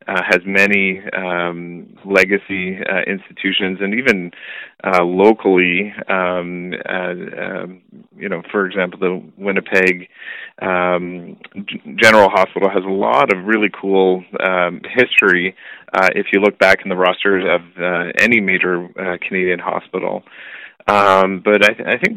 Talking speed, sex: 145 wpm, male